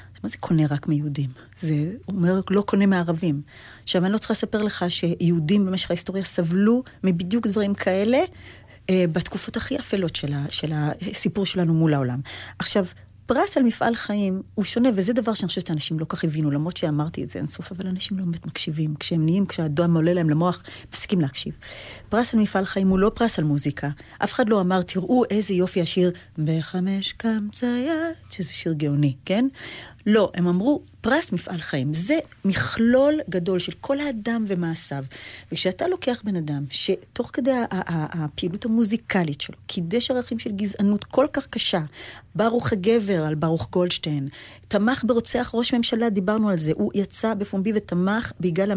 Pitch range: 165-230 Hz